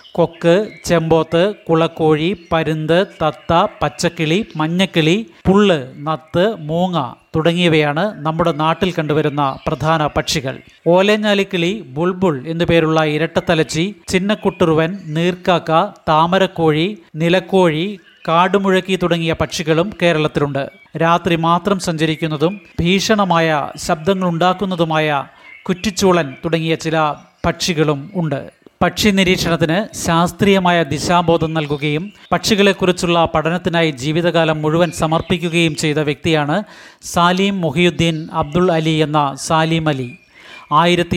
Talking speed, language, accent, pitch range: 85 wpm, Malayalam, native, 160-180 Hz